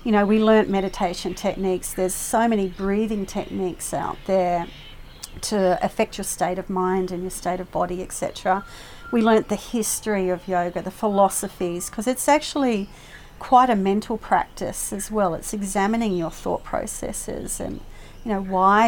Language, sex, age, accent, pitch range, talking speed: English, female, 40-59, Australian, 185-220 Hz, 160 wpm